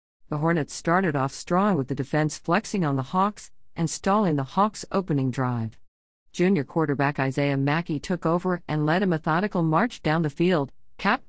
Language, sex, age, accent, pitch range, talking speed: English, female, 50-69, American, 140-190 Hz, 175 wpm